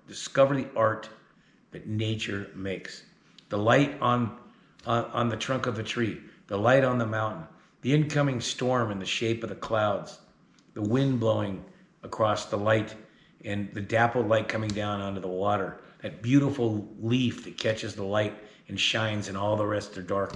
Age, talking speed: 50-69, 175 wpm